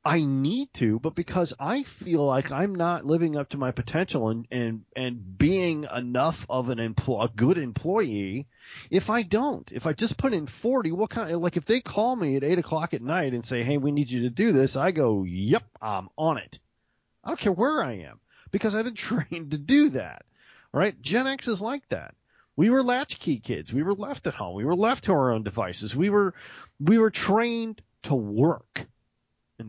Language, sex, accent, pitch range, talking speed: English, male, American, 125-205 Hz, 215 wpm